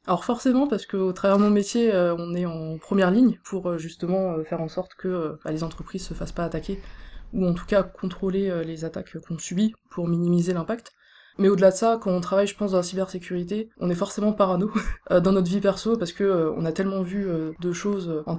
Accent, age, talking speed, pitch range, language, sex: French, 20-39, 240 wpm, 170-190 Hz, French, female